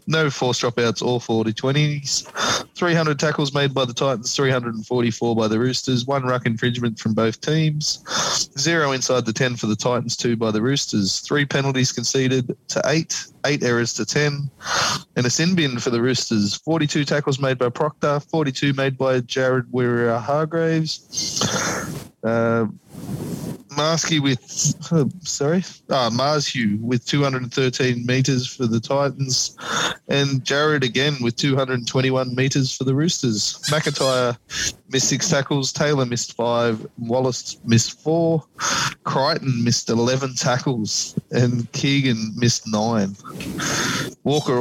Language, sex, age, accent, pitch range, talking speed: English, male, 20-39, Australian, 120-145 Hz, 135 wpm